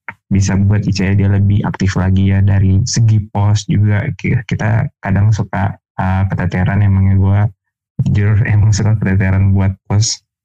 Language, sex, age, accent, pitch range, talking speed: Indonesian, male, 20-39, native, 100-115 Hz, 145 wpm